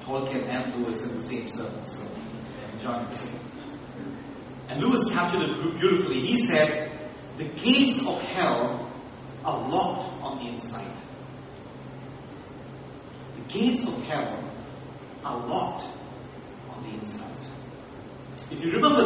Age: 40-59